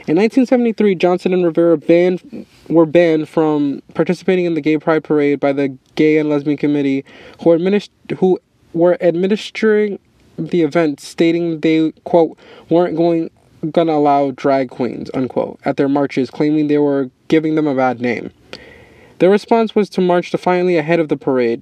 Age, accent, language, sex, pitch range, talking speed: 20-39, American, English, male, 150-180 Hz, 160 wpm